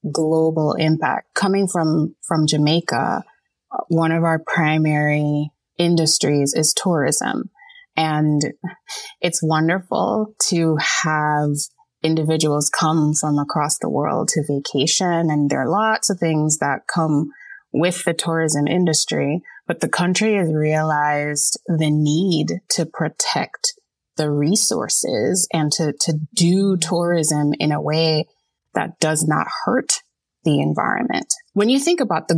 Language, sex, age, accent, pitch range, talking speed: English, female, 20-39, American, 155-185 Hz, 125 wpm